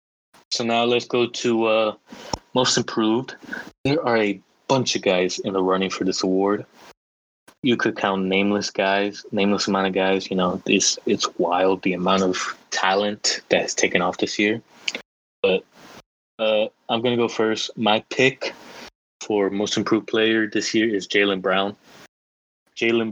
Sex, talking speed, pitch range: male, 165 wpm, 95-115 Hz